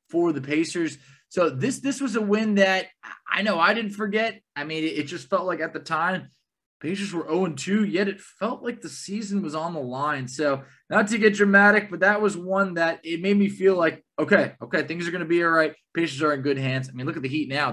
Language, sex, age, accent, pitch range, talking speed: English, male, 20-39, American, 155-205 Hz, 245 wpm